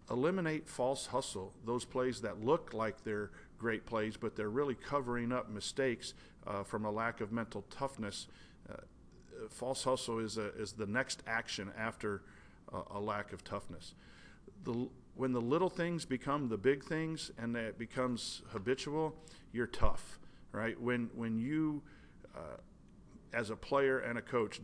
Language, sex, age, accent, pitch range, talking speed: English, male, 50-69, American, 110-125 Hz, 160 wpm